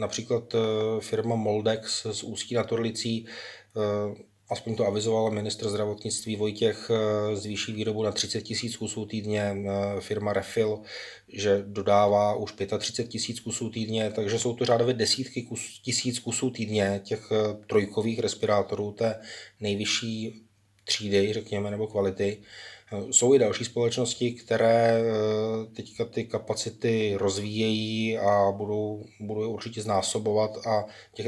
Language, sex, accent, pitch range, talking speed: Czech, male, native, 105-120 Hz, 120 wpm